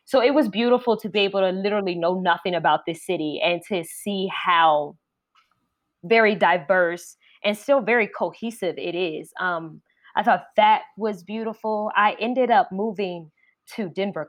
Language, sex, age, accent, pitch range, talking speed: English, female, 20-39, American, 175-230 Hz, 160 wpm